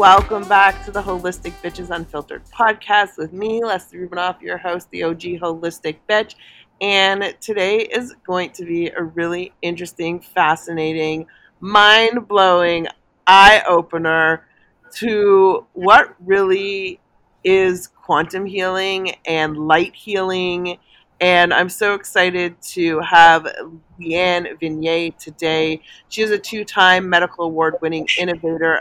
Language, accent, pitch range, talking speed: English, American, 170-205 Hz, 115 wpm